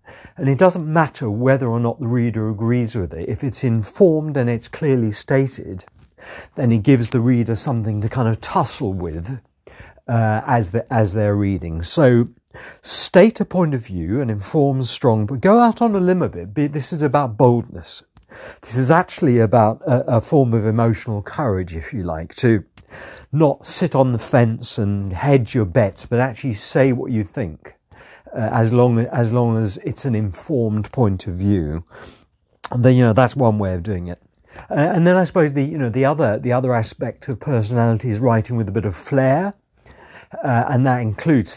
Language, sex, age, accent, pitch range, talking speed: English, male, 50-69, British, 110-135 Hz, 195 wpm